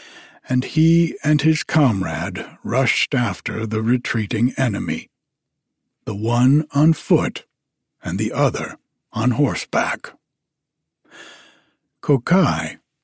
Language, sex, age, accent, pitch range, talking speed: English, male, 60-79, American, 115-150 Hz, 90 wpm